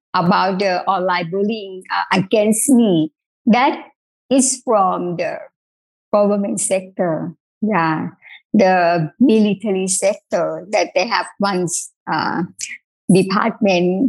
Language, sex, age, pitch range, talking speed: English, male, 50-69, 175-205 Hz, 100 wpm